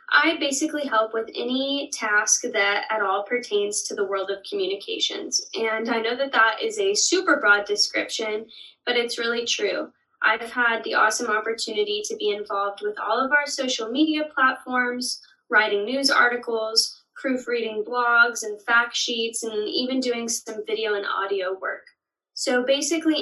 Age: 10-29